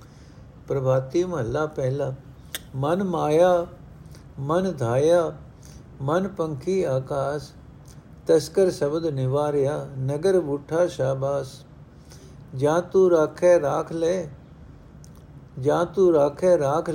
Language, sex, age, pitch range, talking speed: Punjabi, male, 60-79, 140-175 Hz, 85 wpm